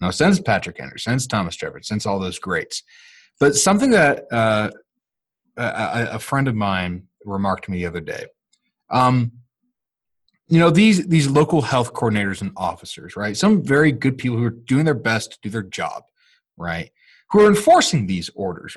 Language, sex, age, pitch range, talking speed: English, male, 30-49, 110-180 Hz, 180 wpm